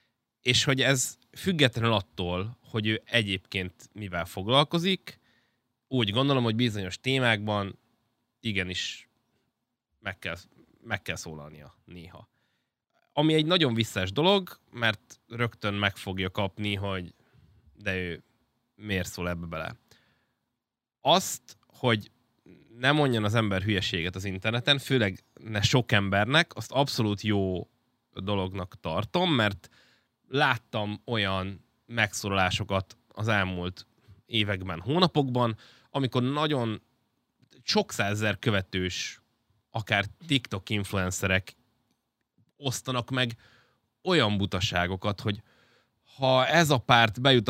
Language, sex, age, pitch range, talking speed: Hungarian, male, 20-39, 100-125 Hz, 105 wpm